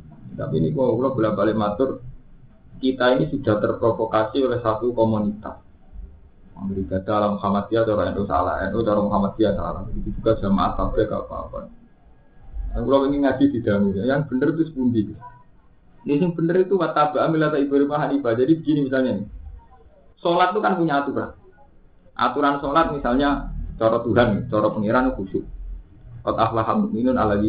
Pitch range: 105-165 Hz